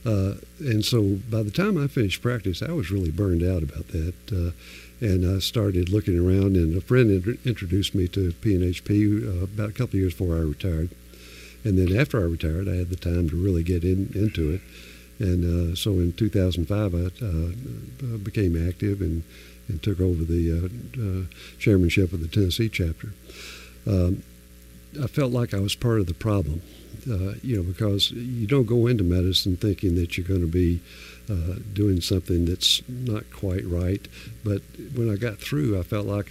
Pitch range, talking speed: 85-105 Hz, 190 wpm